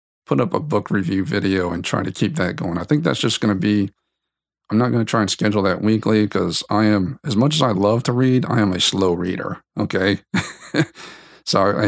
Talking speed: 225 wpm